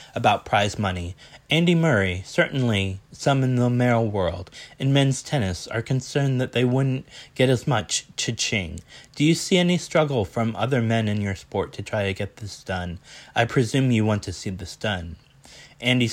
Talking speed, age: 180 wpm, 30-49